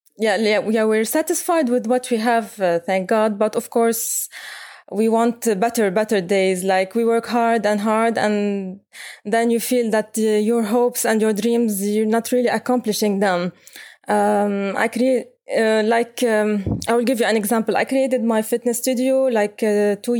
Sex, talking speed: female, 185 wpm